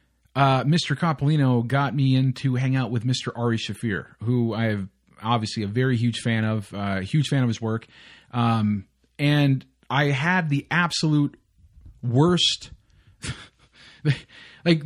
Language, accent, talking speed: English, American, 145 wpm